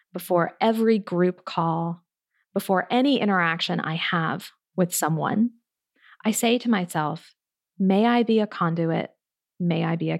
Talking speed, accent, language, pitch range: 140 wpm, American, English, 185-230 Hz